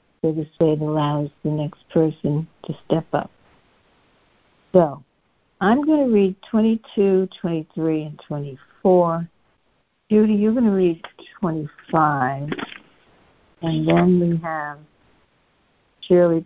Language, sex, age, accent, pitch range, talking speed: English, female, 60-79, American, 150-195 Hz, 115 wpm